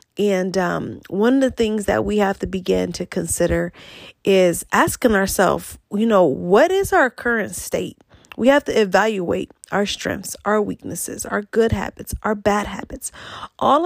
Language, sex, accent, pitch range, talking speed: English, female, American, 210-265 Hz, 165 wpm